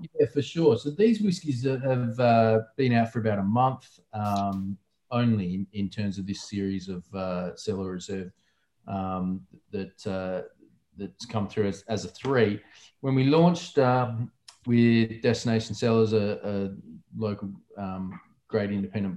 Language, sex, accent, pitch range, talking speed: English, male, Australian, 105-125 Hz, 155 wpm